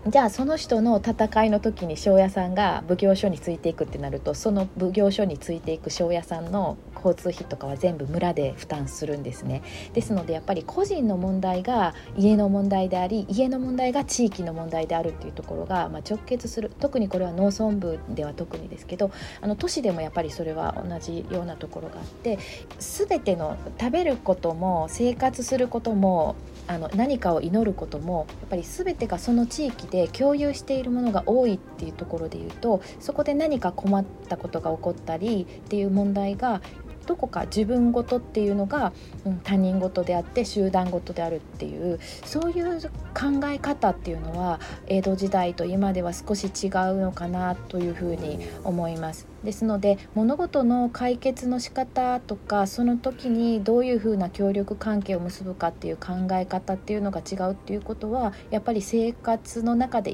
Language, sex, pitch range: Japanese, female, 175-235 Hz